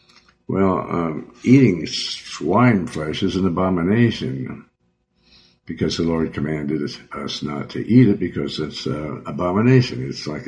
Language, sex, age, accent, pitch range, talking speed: English, male, 60-79, American, 75-105 Hz, 130 wpm